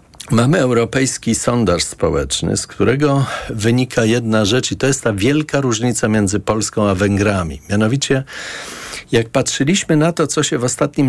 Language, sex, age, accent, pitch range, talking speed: Polish, male, 40-59, native, 115-160 Hz, 150 wpm